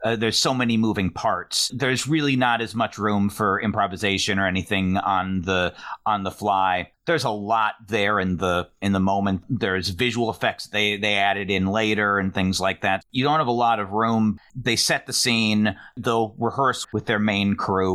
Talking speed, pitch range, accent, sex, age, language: 195 wpm, 95-115 Hz, American, male, 40-59, English